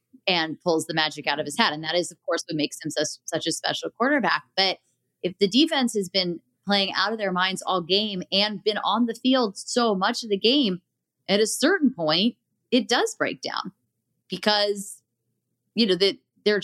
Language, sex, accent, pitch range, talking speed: English, female, American, 160-205 Hz, 205 wpm